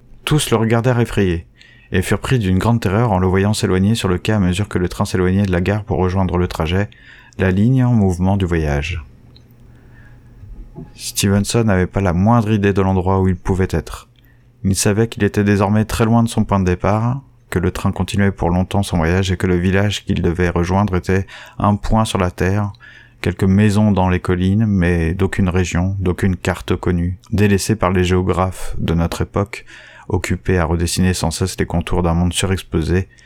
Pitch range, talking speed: 90-115 Hz, 195 wpm